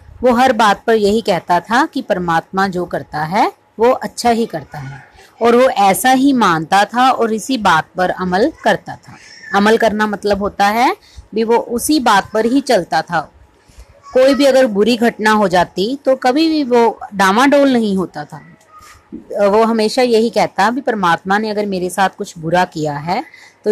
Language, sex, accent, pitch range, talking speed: Hindi, female, native, 175-245 Hz, 185 wpm